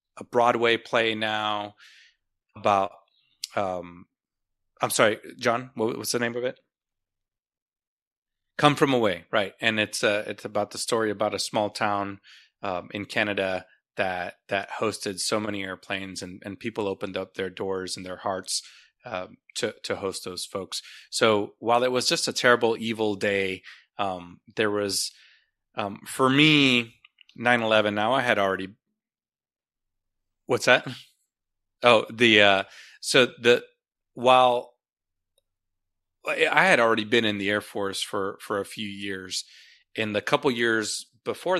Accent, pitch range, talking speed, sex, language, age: American, 100-120 Hz, 145 wpm, male, English, 30-49